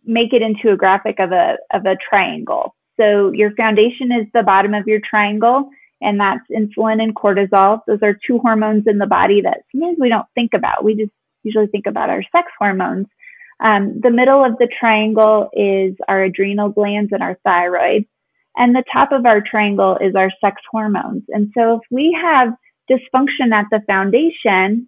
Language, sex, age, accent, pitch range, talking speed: English, female, 20-39, American, 205-250 Hz, 185 wpm